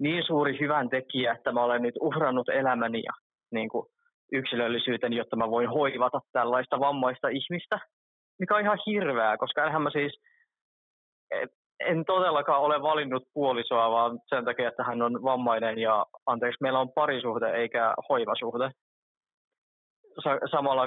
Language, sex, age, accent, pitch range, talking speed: Finnish, male, 20-39, native, 120-150 Hz, 140 wpm